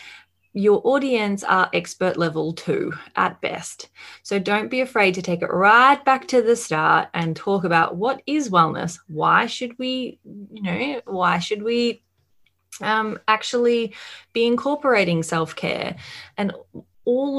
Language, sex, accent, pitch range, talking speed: English, female, Australian, 175-230 Hz, 140 wpm